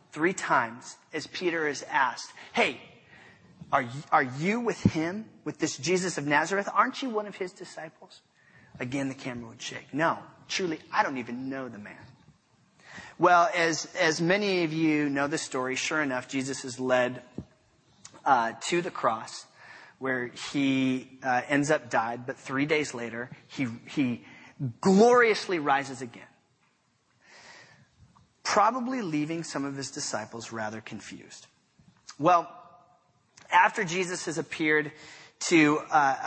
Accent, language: American, English